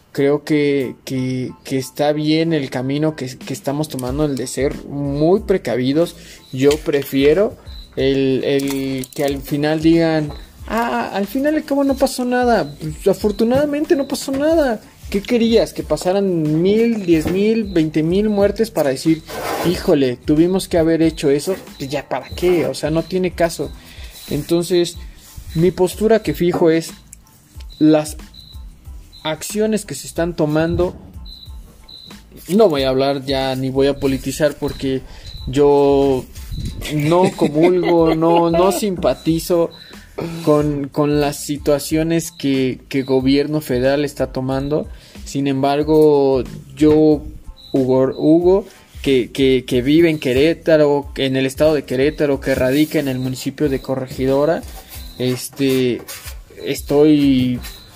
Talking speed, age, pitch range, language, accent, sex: 130 wpm, 20-39, 135-170 Hz, Spanish, Mexican, male